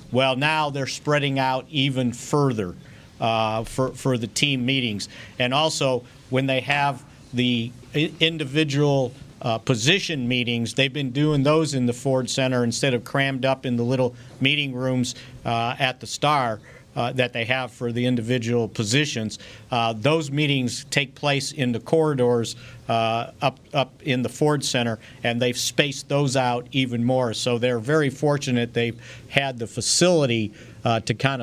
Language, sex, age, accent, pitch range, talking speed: English, male, 50-69, American, 120-140 Hz, 160 wpm